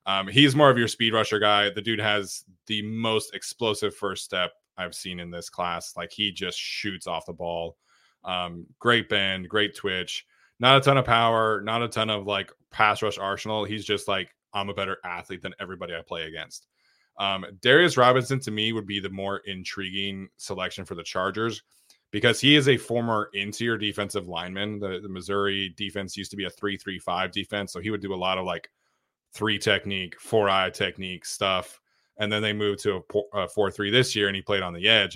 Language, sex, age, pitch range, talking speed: English, male, 20-39, 95-110 Hz, 205 wpm